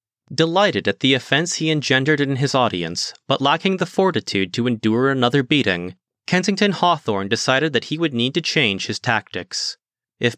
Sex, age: male, 30-49